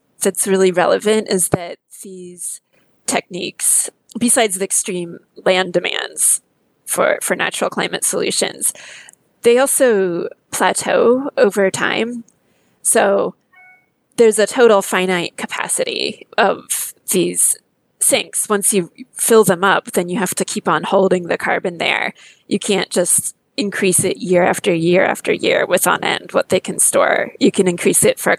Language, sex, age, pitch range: English, female, 20-39, 185-230 Hz